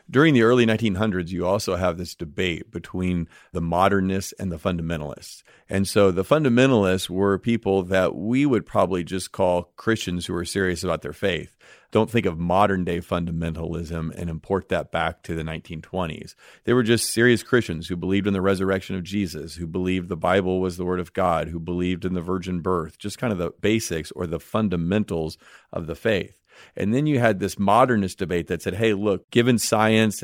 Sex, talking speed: male, 195 wpm